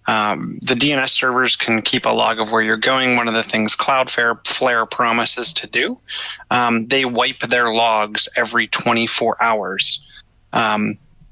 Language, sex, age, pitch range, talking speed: English, male, 30-49, 110-125 Hz, 160 wpm